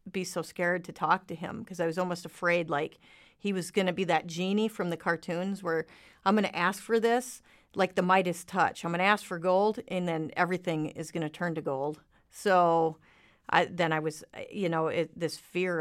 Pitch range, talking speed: 165-210 Hz, 215 wpm